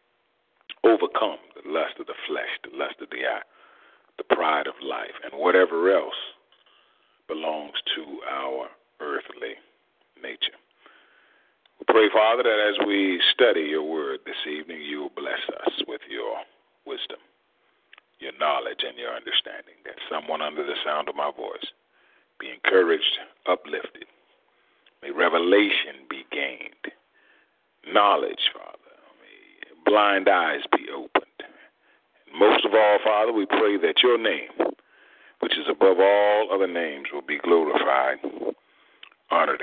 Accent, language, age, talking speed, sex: American, English, 40-59, 130 wpm, male